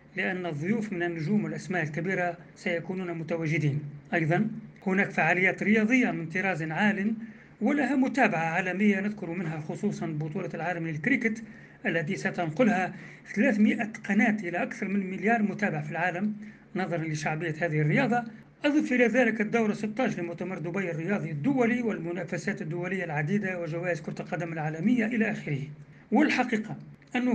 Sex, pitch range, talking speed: male, 175-215 Hz, 130 wpm